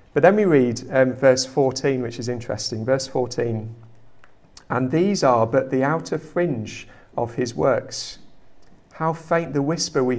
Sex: male